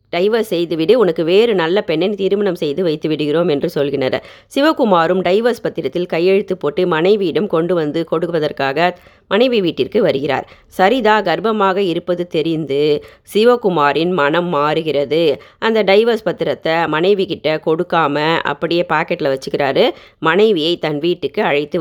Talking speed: 120 wpm